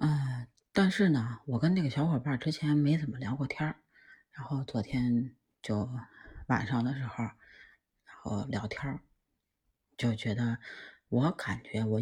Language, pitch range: Chinese, 115-160 Hz